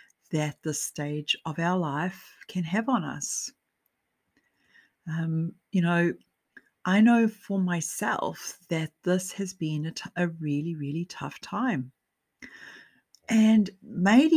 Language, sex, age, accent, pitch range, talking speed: English, female, 40-59, Australian, 155-195 Hz, 125 wpm